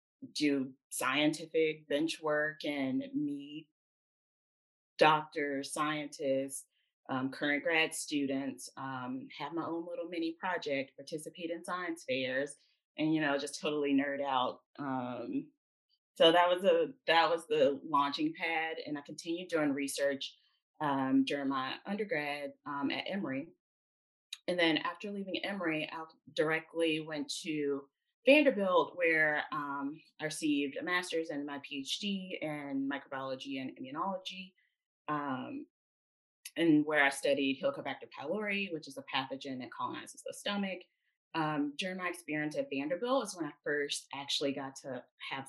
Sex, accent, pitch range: female, American, 140-200 Hz